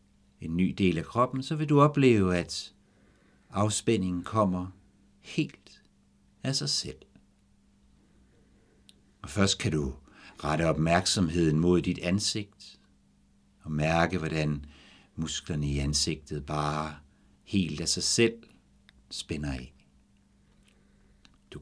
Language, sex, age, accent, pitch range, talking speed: Danish, male, 60-79, native, 70-100 Hz, 110 wpm